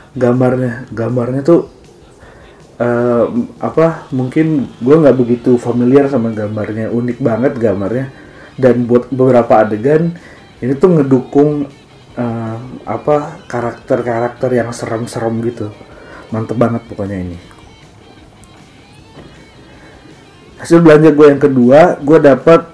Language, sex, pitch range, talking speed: English, male, 110-135 Hz, 105 wpm